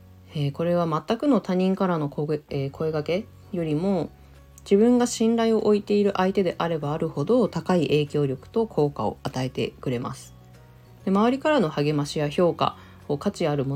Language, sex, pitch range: Japanese, female, 140-200 Hz